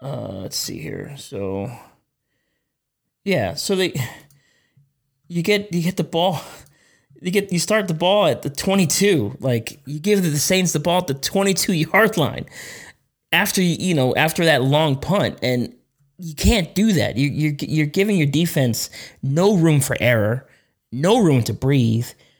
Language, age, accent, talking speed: English, 20-39, American, 165 wpm